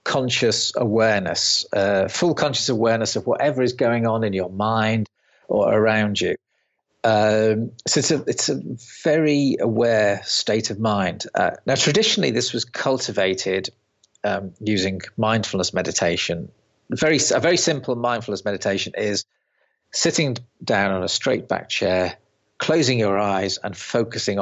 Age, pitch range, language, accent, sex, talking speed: 40-59, 100-125 Hz, English, British, male, 140 wpm